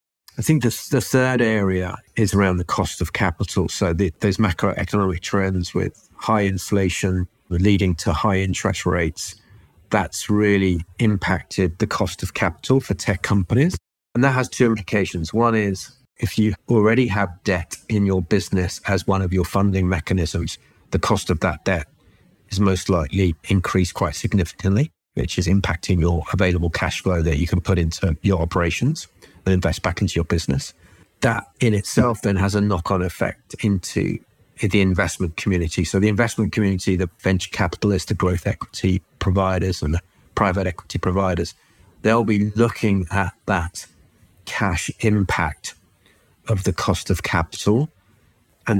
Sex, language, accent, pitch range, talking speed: male, English, British, 90-110 Hz, 155 wpm